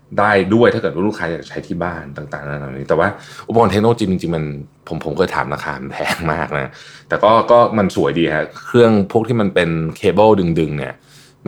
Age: 20-39